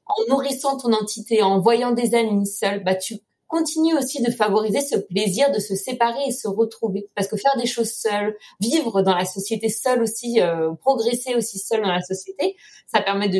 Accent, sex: French, female